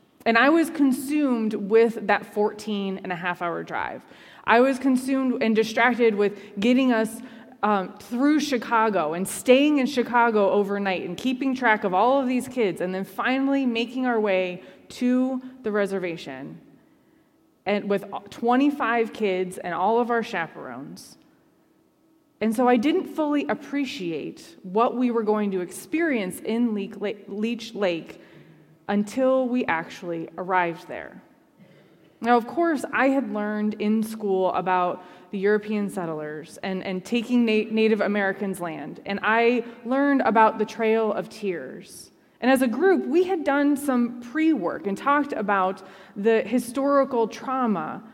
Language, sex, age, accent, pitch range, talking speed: English, female, 20-39, American, 200-255 Hz, 140 wpm